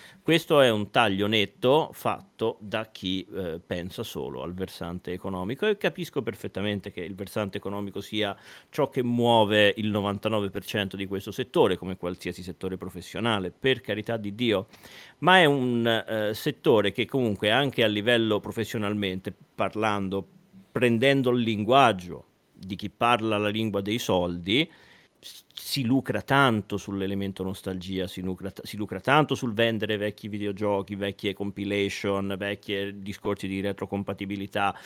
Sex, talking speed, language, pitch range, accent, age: male, 140 wpm, Italian, 100-115 Hz, native, 40-59